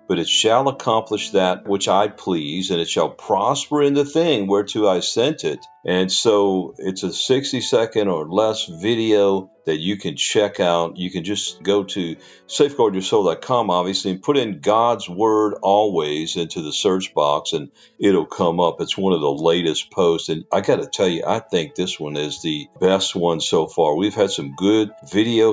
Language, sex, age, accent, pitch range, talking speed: English, male, 50-69, American, 85-110 Hz, 190 wpm